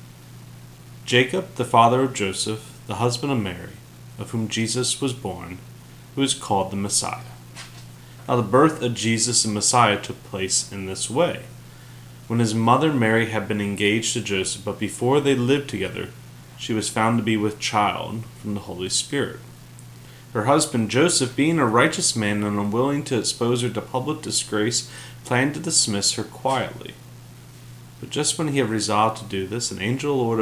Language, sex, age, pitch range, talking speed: English, male, 30-49, 95-125 Hz, 175 wpm